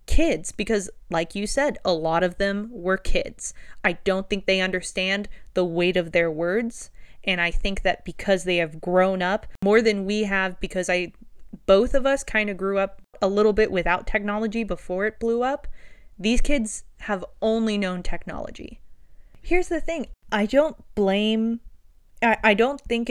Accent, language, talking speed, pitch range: American, English, 175 wpm, 185-230 Hz